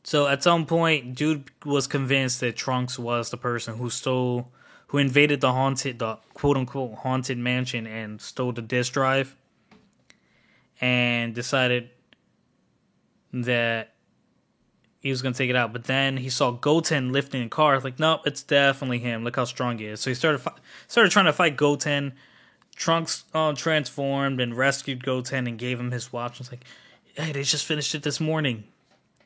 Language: English